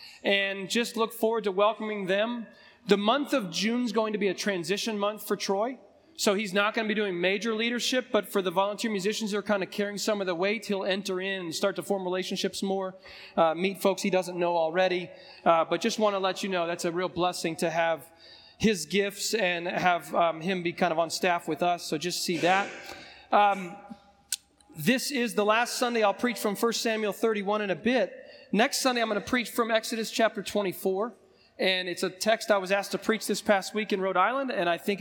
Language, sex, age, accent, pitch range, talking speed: English, male, 30-49, American, 180-215 Hz, 230 wpm